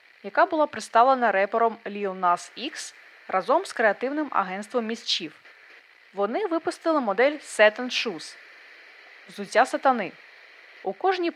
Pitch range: 190-280 Hz